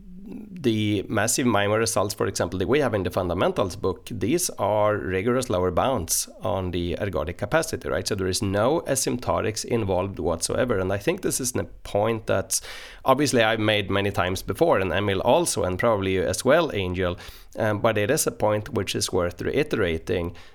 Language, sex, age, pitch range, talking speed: English, male, 30-49, 95-110 Hz, 180 wpm